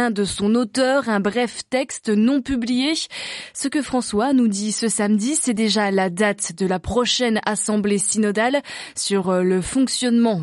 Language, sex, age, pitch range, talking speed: French, female, 20-39, 190-250 Hz, 155 wpm